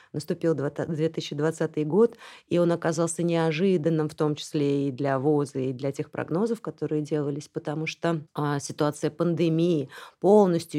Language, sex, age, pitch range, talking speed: Russian, female, 30-49, 150-180 Hz, 135 wpm